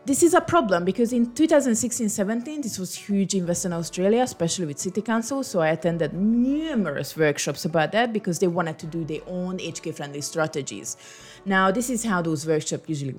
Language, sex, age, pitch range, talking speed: English, female, 30-49, 165-230 Hz, 185 wpm